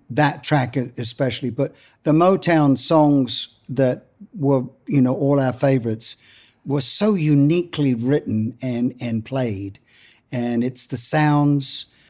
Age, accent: 60-79, British